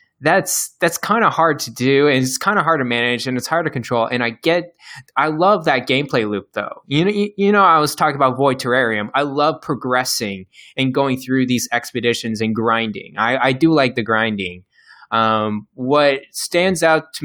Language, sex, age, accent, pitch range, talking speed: English, male, 20-39, American, 110-135 Hz, 210 wpm